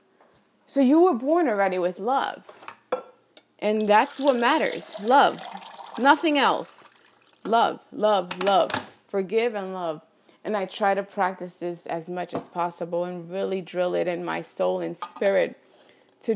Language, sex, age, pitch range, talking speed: English, female, 20-39, 175-215 Hz, 145 wpm